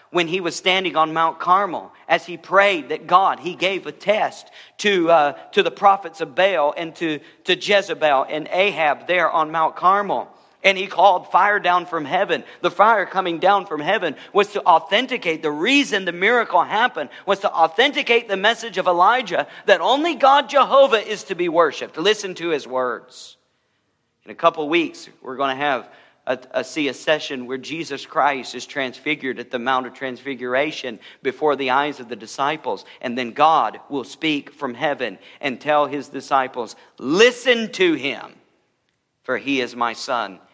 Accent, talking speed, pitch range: American, 180 wpm, 135-195 Hz